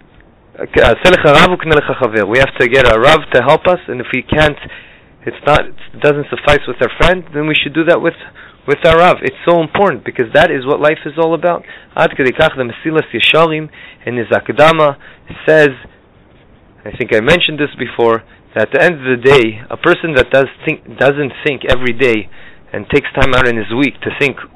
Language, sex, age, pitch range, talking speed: English, male, 30-49, 125-165 Hz, 185 wpm